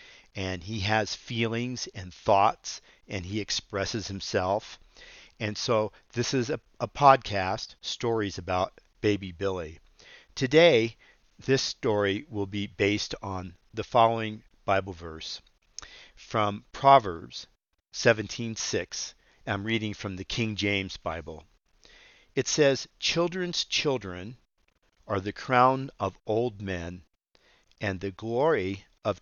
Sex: male